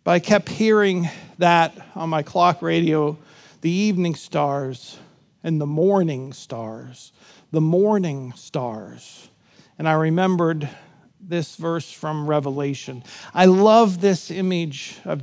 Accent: American